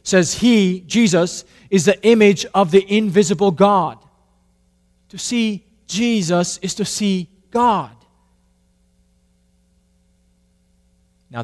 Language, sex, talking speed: English, male, 95 wpm